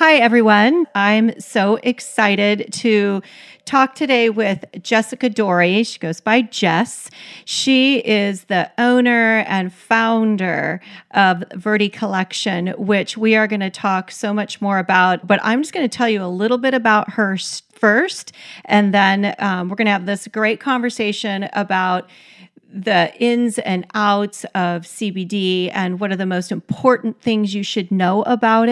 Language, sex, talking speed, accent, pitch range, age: English, female, 155 wpm, American, 185-225 Hz, 40-59